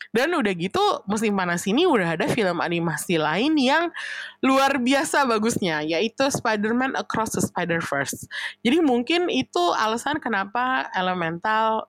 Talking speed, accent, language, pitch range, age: 130 wpm, native, Indonesian, 180-265 Hz, 20-39